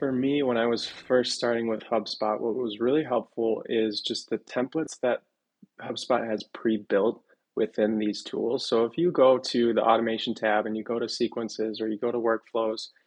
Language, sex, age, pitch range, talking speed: English, male, 20-39, 110-125 Hz, 195 wpm